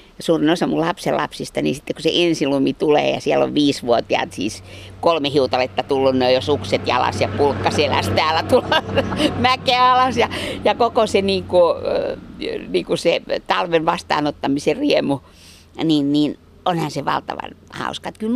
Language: Finnish